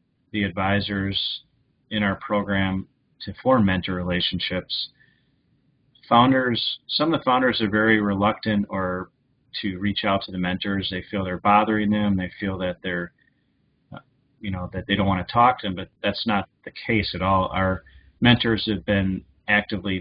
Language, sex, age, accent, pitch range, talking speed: English, male, 30-49, American, 95-110 Hz, 165 wpm